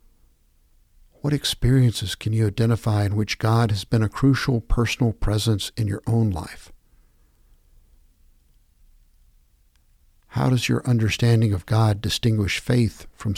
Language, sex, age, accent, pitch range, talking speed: English, male, 60-79, American, 95-120 Hz, 120 wpm